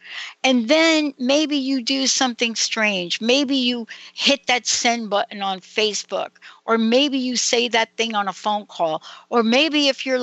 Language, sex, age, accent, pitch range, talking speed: English, female, 60-79, American, 190-250 Hz, 170 wpm